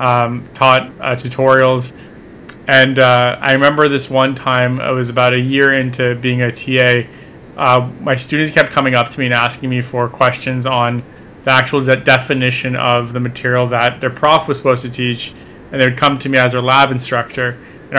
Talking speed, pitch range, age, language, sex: 195 wpm, 125-135 Hz, 30-49, English, male